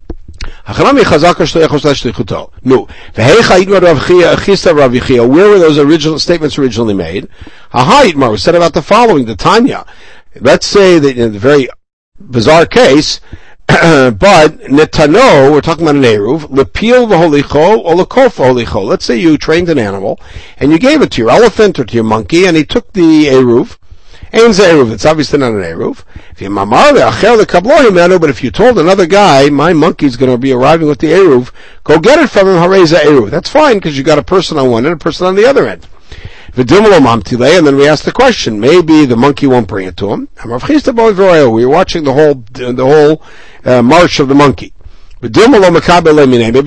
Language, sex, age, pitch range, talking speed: English, male, 60-79, 130-180 Hz, 155 wpm